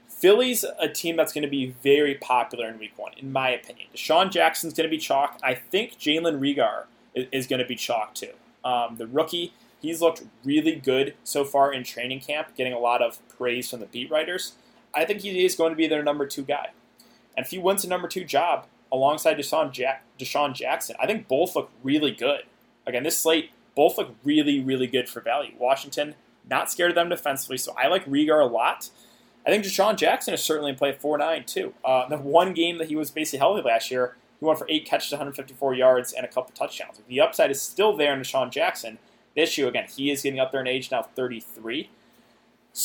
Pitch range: 130-160 Hz